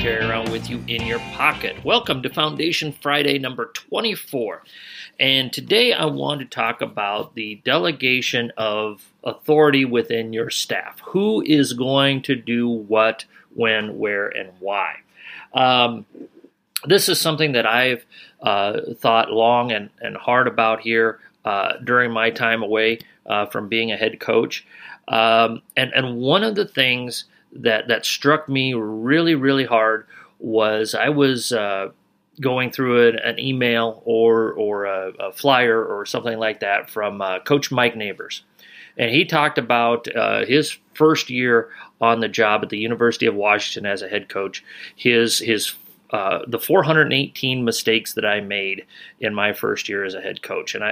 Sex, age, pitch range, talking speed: male, 40-59, 110-135 Hz, 160 wpm